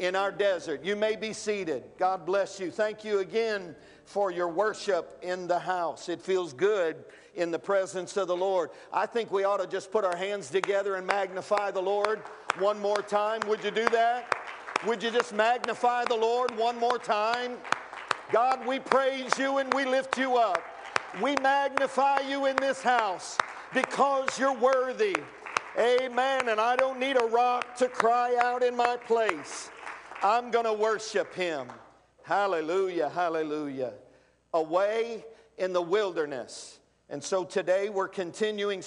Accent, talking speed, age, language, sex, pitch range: American, 160 wpm, 50-69, English, male, 190-250 Hz